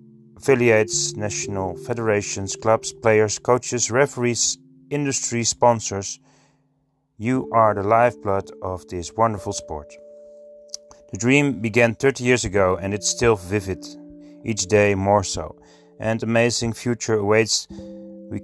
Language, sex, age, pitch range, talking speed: Dutch, male, 30-49, 100-130 Hz, 115 wpm